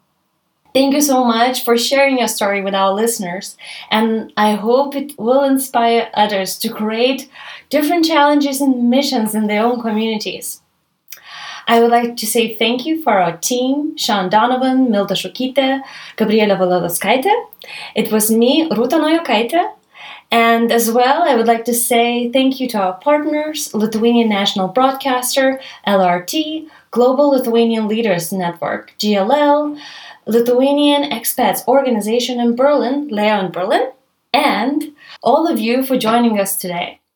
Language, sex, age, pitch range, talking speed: English, female, 20-39, 210-275 Hz, 140 wpm